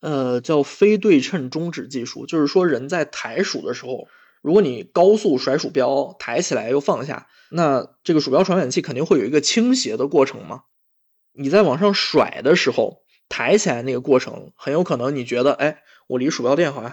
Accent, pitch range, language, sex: native, 135-180 Hz, Chinese, male